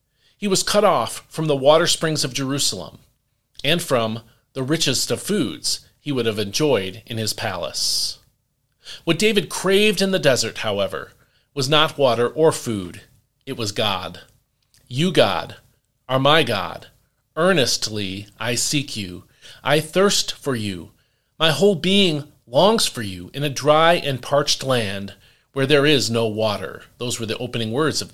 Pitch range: 115-160 Hz